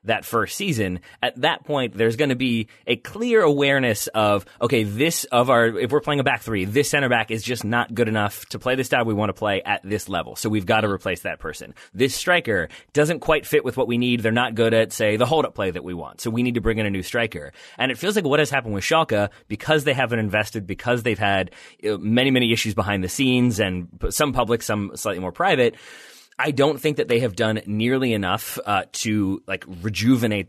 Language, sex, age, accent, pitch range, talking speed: English, male, 30-49, American, 105-130 Hz, 240 wpm